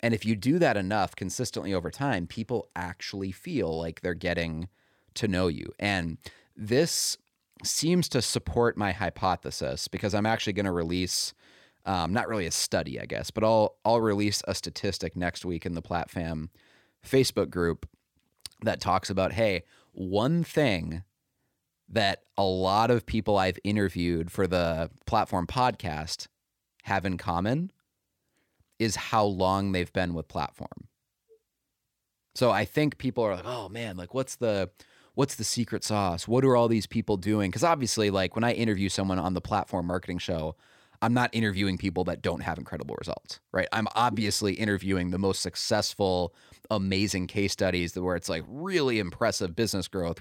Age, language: 30-49, English